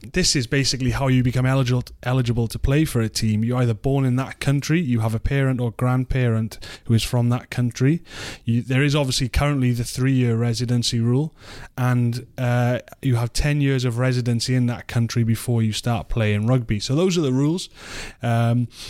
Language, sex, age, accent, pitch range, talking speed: English, male, 20-39, British, 115-135 Hz, 185 wpm